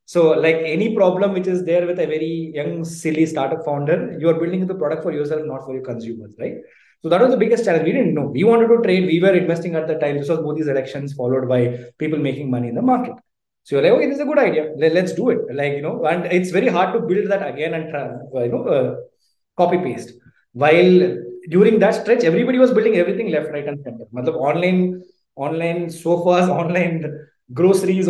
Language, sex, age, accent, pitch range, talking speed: English, male, 20-39, Indian, 145-180 Hz, 225 wpm